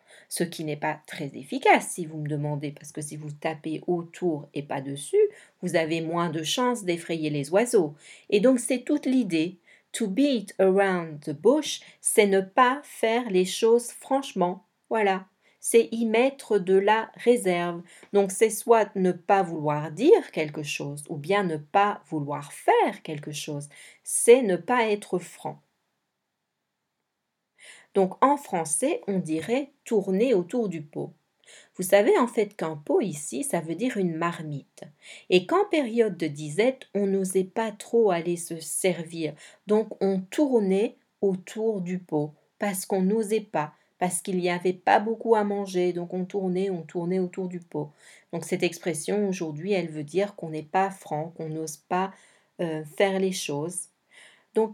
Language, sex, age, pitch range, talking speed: French, female, 40-59, 165-220 Hz, 165 wpm